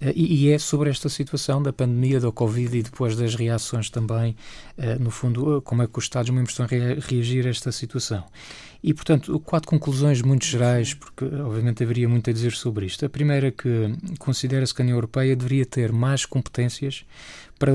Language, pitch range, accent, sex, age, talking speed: Portuguese, 120-140 Hz, Portuguese, male, 20-39, 185 wpm